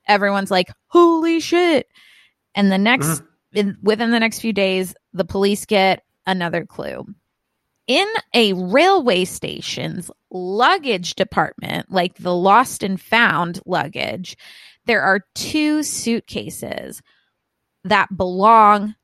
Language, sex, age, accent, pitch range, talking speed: English, female, 20-39, American, 190-245 Hz, 110 wpm